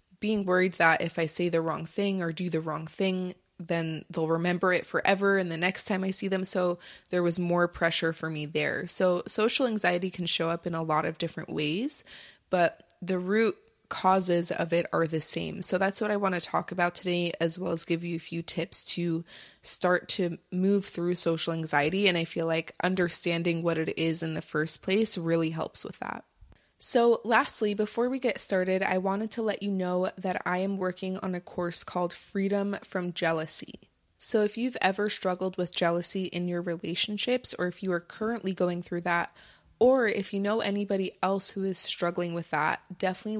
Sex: female